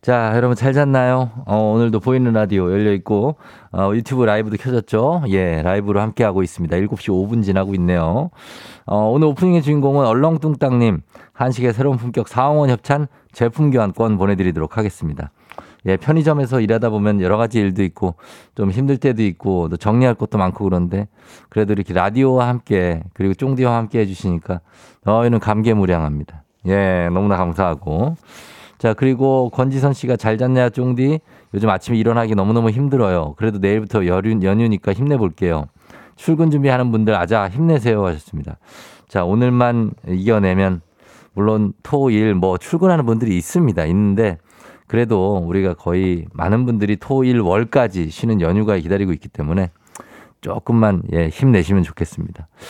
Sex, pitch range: male, 95-125 Hz